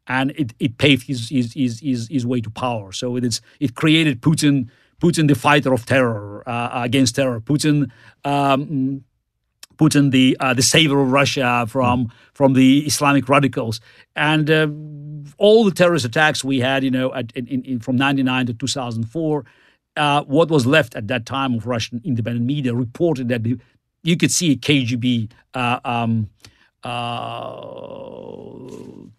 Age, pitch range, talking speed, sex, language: 50-69, 125-150 Hz, 160 wpm, male, English